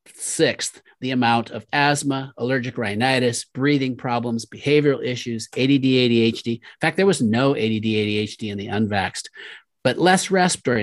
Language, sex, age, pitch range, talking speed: English, male, 40-59, 115-145 Hz, 145 wpm